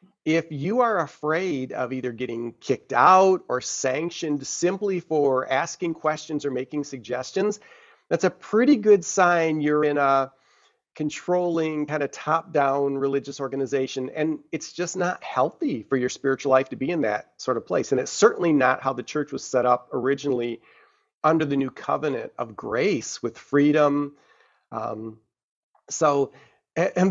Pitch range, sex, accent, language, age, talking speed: 135-160 Hz, male, American, English, 40-59, 155 wpm